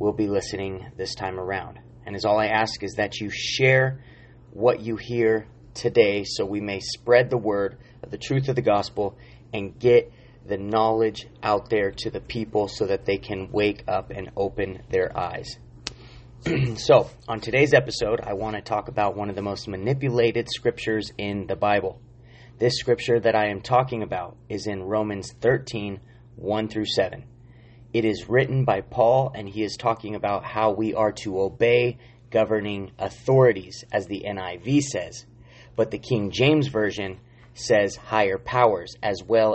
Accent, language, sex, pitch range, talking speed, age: American, English, male, 105-120 Hz, 170 wpm, 30-49